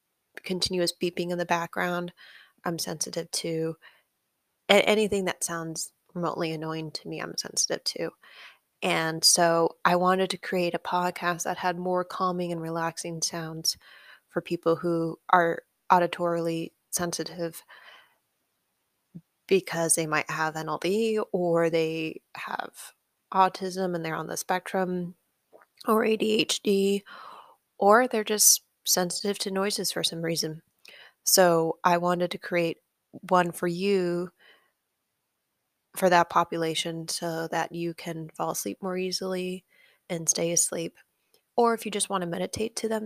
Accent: American